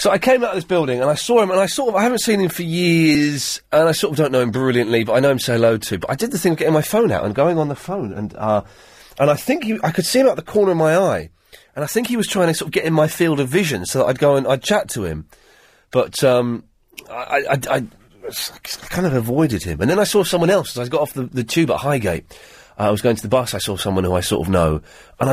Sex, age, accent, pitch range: male, 30-49, British, 135-220 Hz